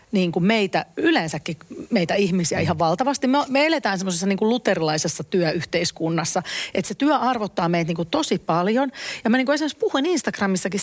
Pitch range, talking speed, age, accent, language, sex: 175-240 Hz, 165 wpm, 40-59, native, Finnish, female